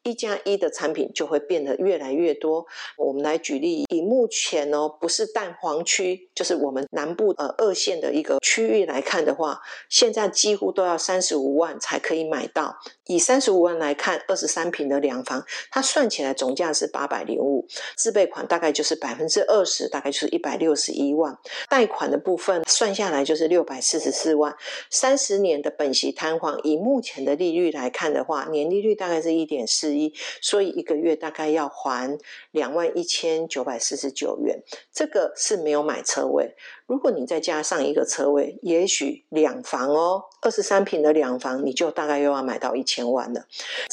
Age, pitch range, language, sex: 50-69, 150-225 Hz, Chinese, female